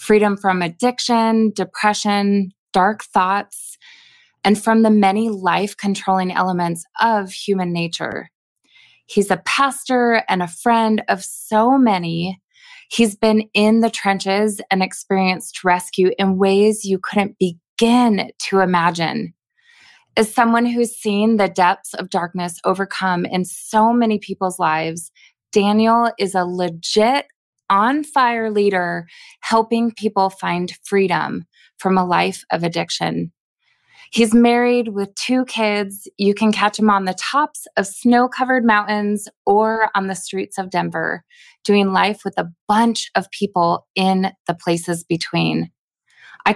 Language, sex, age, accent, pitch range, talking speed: English, female, 20-39, American, 185-225 Hz, 130 wpm